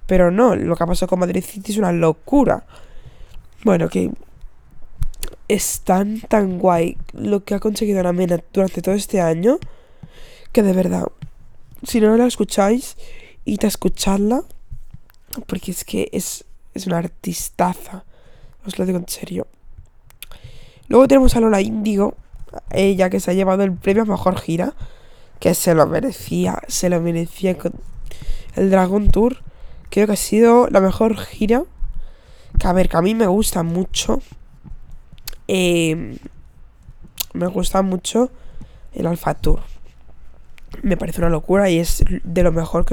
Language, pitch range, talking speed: Spanish, 170-210 Hz, 150 wpm